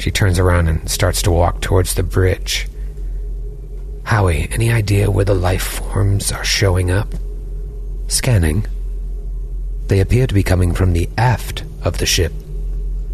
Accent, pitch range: American, 90-105 Hz